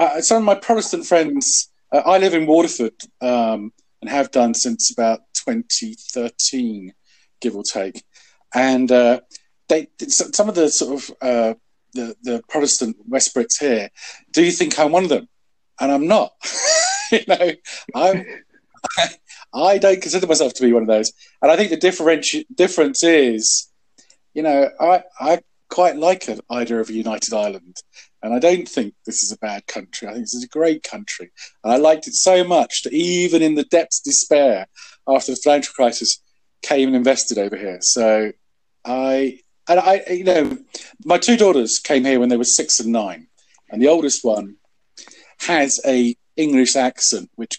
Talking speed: 180 wpm